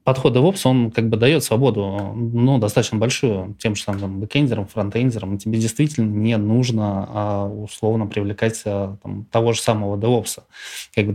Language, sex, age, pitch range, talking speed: Russian, male, 20-39, 100-115 Hz, 160 wpm